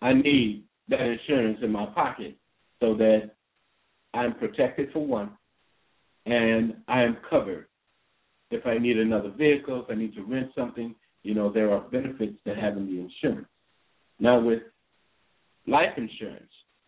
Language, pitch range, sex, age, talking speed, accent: English, 110-155 Hz, male, 50-69, 145 wpm, American